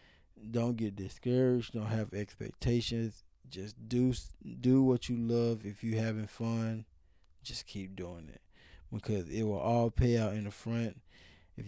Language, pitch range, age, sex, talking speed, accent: English, 95-115 Hz, 20-39, male, 155 wpm, American